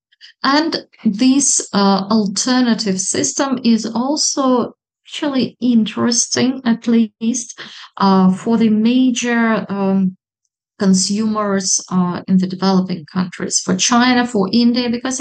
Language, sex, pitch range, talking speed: English, female, 185-220 Hz, 105 wpm